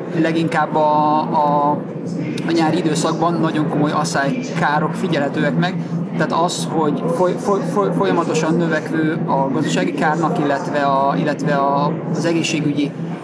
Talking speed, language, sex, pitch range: 125 wpm, Hungarian, male, 155-170 Hz